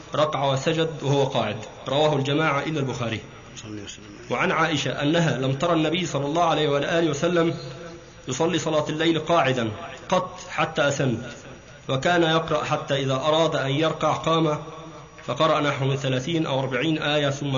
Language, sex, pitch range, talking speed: Arabic, male, 135-165 Hz, 145 wpm